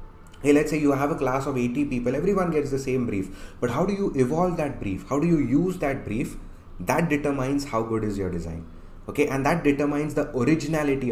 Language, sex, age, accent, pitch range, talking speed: English, male, 30-49, Indian, 100-145 Hz, 215 wpm